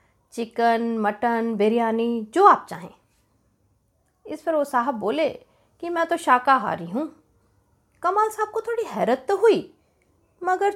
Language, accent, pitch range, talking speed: Hindi, native, 225-350 Hz, 145 wpm